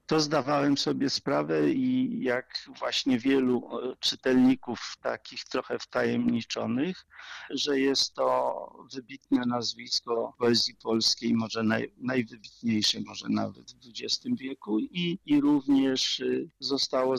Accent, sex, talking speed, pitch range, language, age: native, male, 110 wpm, 115-150 Hz, Polish, 50-69